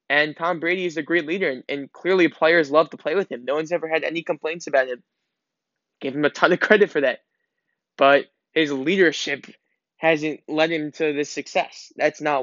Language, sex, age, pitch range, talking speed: English, male, 10-29, 150-175 Hz, 210 wpm